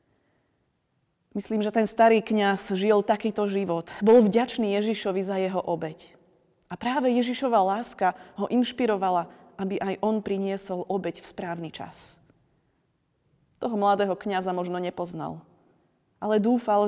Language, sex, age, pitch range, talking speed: Slovak, female, 30-49, 170-205 Hz, 125 wpm